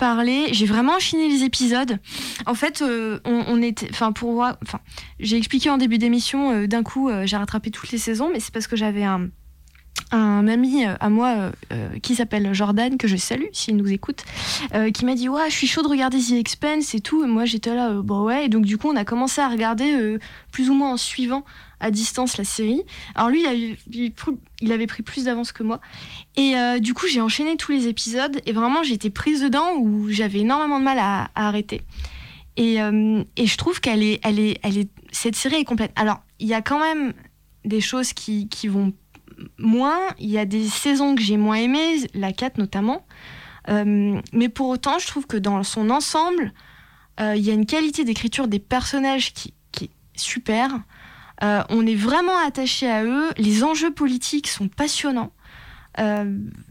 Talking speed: 210 wpm